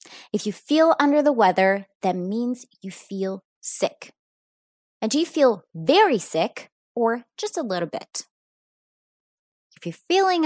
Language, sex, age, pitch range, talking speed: English, female, 20-39, 200-320 Hz, 145 wpm